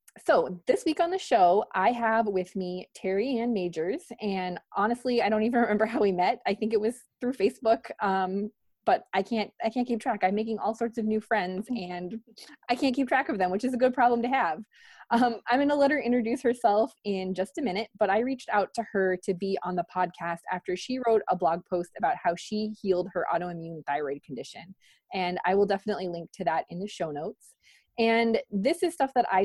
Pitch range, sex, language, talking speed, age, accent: 180-235 Hz, female, English, 225 wpm, 20-39, American